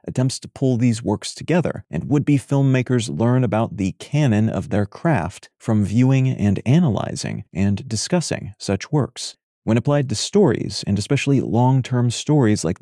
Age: 30-49